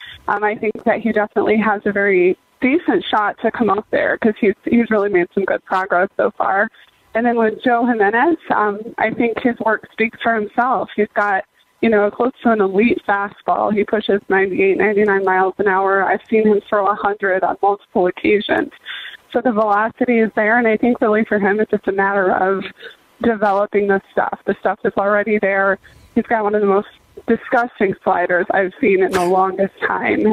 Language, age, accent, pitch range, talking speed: English, 20-39, American, 195-230 Hz, 200 wpm